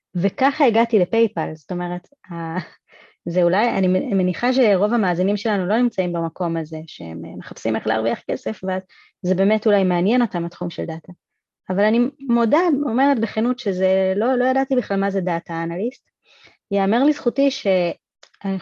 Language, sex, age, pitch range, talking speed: English, female, 30-49, 180-235 Hz, 130 wpm